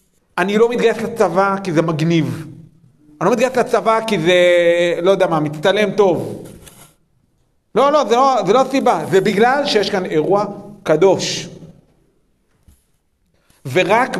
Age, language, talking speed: 40-59, Hebrew, 115 wpm